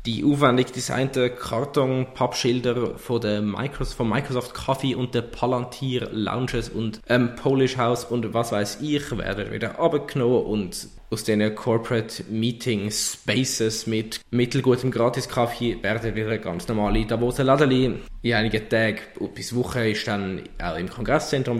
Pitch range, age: 110-130 Hz, 20-39